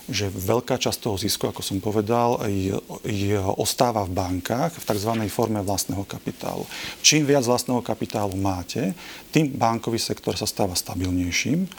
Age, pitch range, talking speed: 40-59, 100-115 Hz, 150 wpm